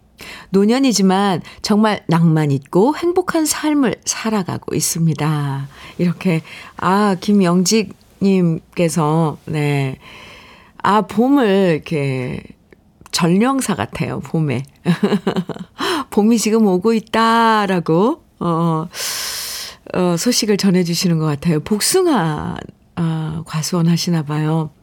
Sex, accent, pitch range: female, native, 160-210 Hz